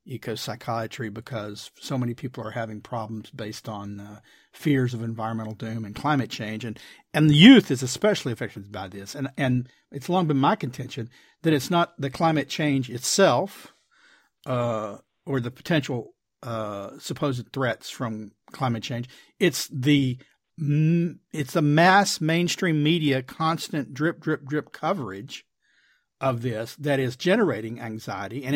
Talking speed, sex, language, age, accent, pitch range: 150 wpm, male, English, 50-69, American, 120-160 Hz